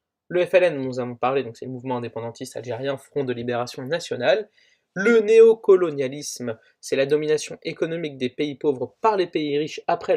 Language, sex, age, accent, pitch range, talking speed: French, male, 20-39, French, 130-205 Hz, 175 wpm